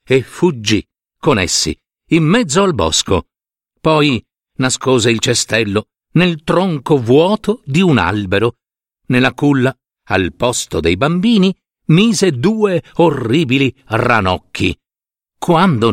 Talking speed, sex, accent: 110 wpm, male, native